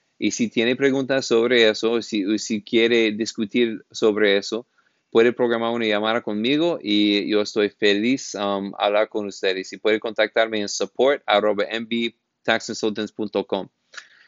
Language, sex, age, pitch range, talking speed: Spanish, male, 30-49, 105-115 Hz, 130 wpm